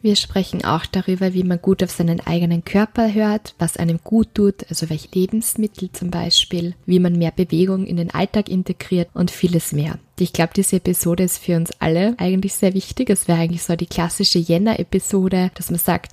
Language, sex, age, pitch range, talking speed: German, female, 20-39, 170-190 Hz, 195 wpm